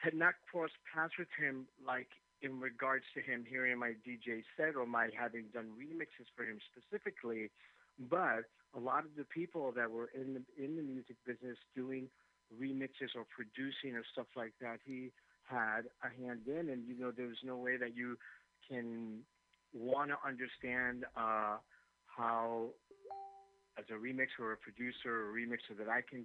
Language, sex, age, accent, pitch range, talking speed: English, male, 50-69, American, 115-130 Hz, 175 wpm